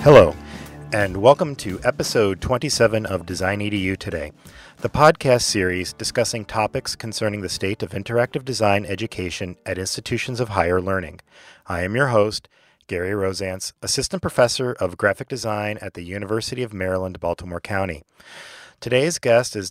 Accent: American